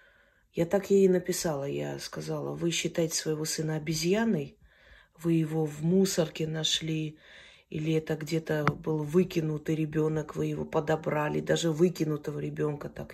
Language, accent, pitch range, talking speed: Russian, native, 160-205 Hz, 135 wpm